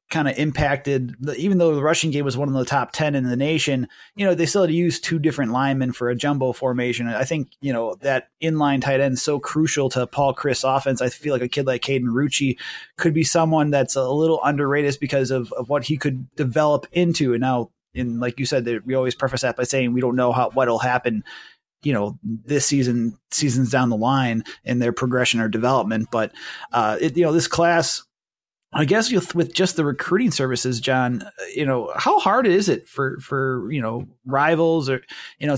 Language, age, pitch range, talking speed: English, 30-49, 130-150 Hz, 220 wpm